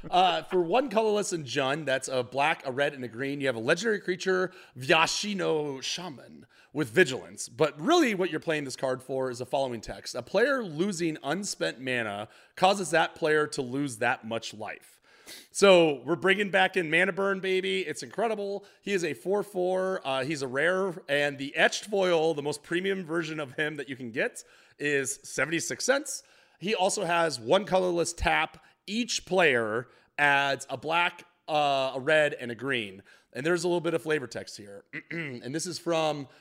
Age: 30-49